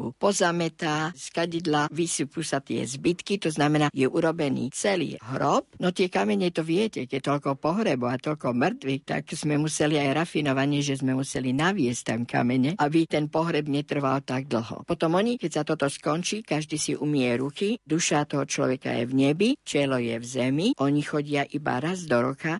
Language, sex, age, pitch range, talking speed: Slovak, female, 50-69, 135-165 Hz, 180 wpm